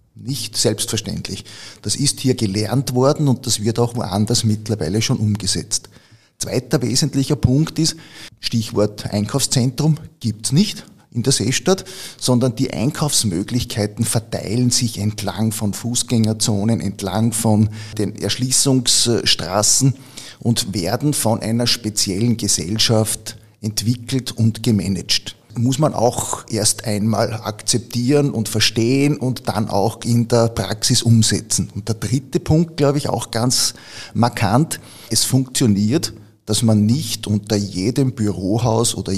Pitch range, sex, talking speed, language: 105-125 Hz, male, 125 wpm, German